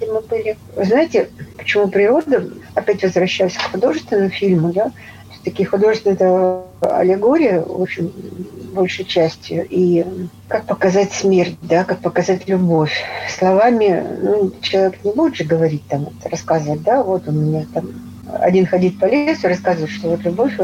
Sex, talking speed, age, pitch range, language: female, 140 wpm, 50-69, 160-195 Hz, Russian